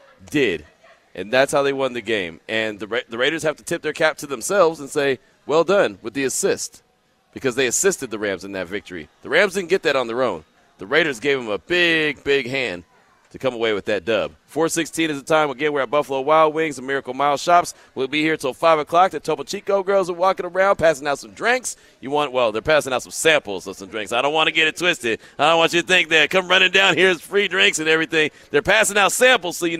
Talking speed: 255 wpm